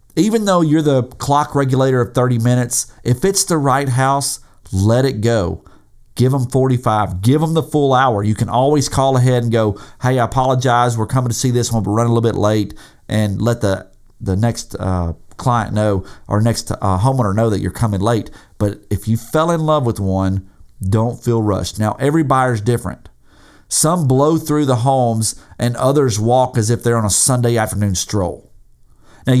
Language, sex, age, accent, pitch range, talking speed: English, male, 40-59, American, 110-140 Hz, 200 wpm